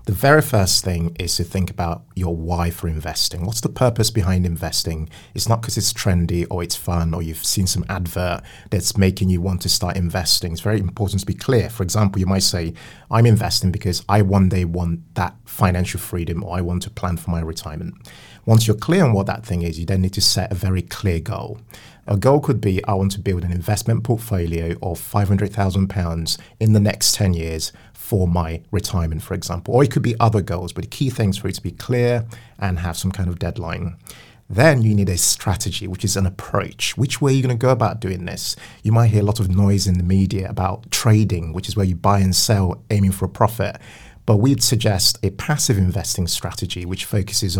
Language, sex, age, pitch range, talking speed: English, male, 30-49, 90-110 Hz, 225 wpm